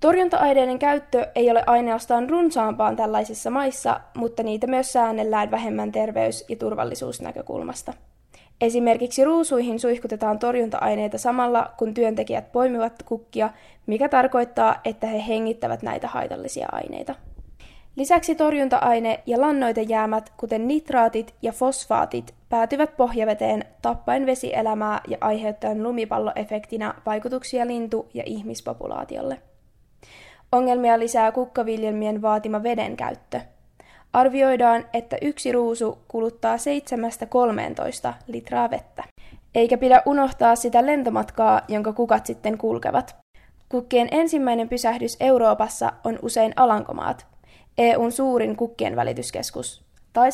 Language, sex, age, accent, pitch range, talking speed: Finnish, female, 10-29, native, 220-255 Hz, 105 wpm